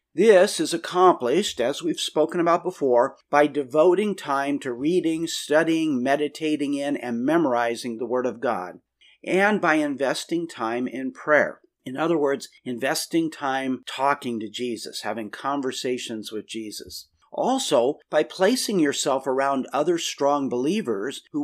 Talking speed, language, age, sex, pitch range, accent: 135 wpm, English, 50-69, male, 135-190 Hz, American